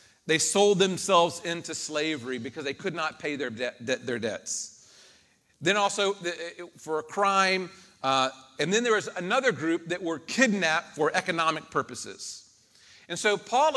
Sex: male